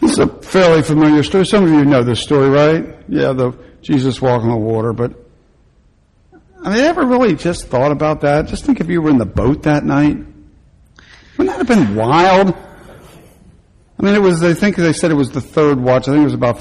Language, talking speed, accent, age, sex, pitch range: English, 225 wpm, American, 60-79, male, 135-195 Hz